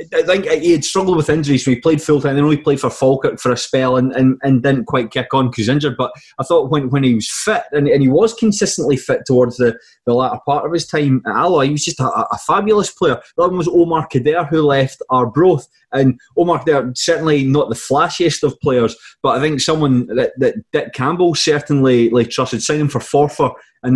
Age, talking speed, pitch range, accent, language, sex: 20-39, 240 wpm, 130-170 Hz, British, English, male